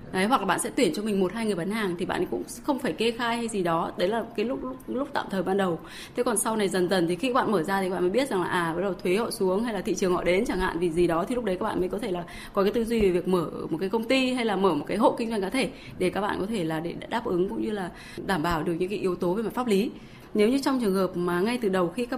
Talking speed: 360 wpm